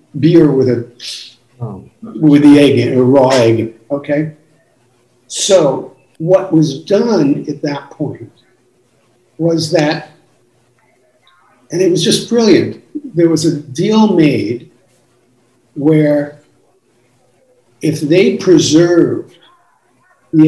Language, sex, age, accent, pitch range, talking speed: English, male, 50-69, American, 130-170 Hz, 105 wpm